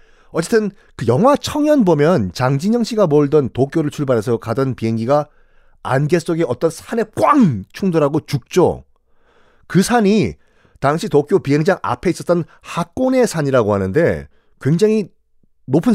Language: Korean